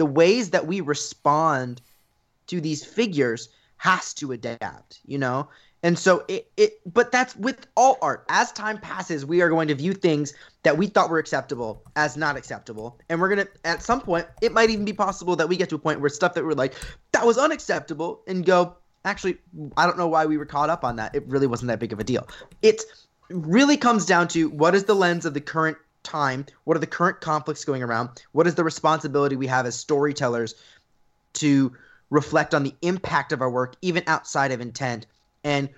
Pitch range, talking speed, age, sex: 135-180 Hz, 210 wpm, 20-39, male